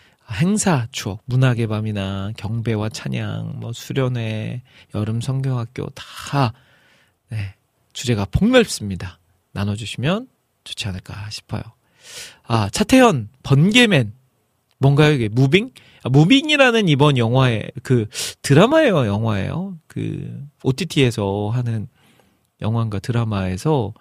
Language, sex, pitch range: Korean, male, 115-155 Hz